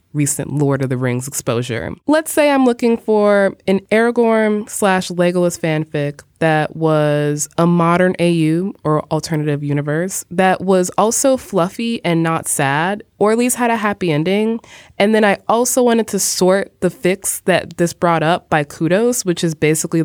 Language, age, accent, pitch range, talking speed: English, 20-39, American, 145-205 Hz, 170 wpm